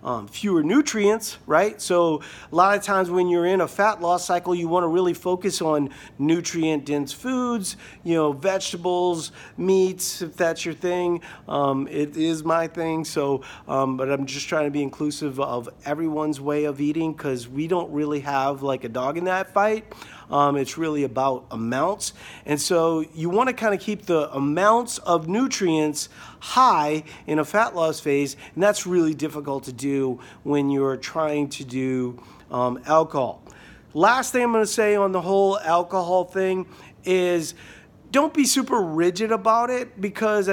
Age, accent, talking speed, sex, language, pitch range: 40-59, American, 175 wpm, male, English, 145-195 Hz